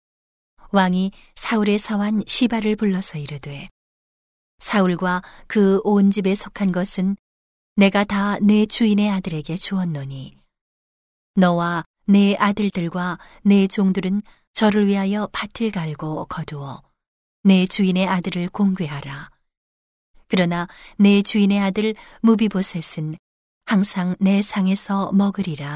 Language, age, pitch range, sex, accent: Korean, 40-59, 165-205 Hz, female, native